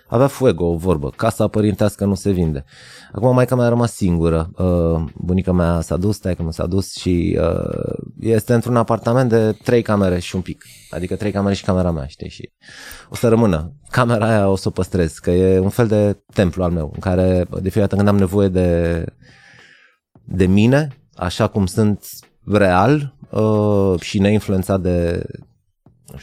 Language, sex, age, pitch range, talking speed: Romanian, male, 20-39, 90-110 Hz, 180 wpm